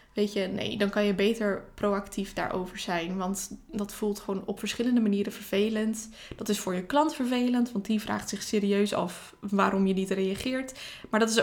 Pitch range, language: 195-235 Hz, Dutch